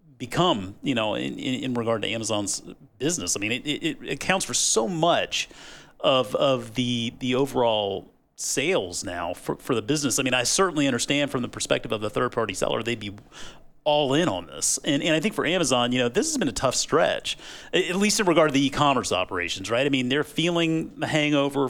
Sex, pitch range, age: male, 115-150 Hz, 40-59